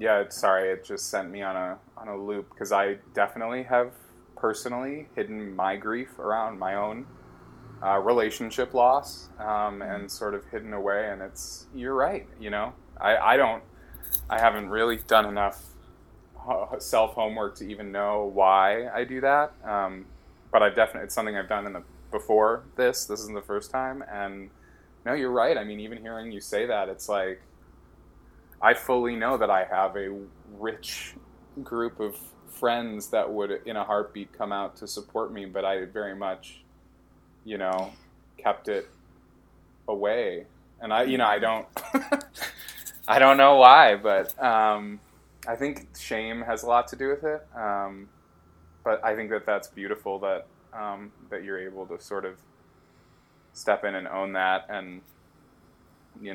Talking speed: 165 wpm